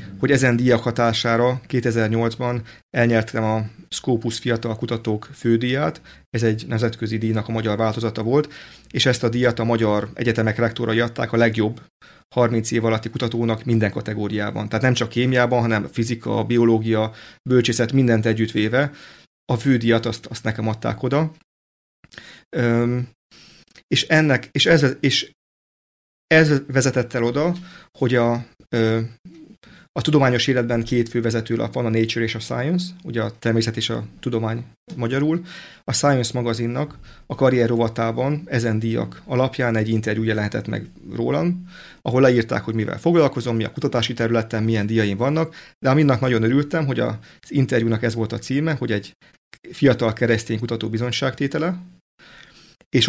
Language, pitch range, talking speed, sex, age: Slovak, 115-130 Hz, 145 wpm, male, 30-49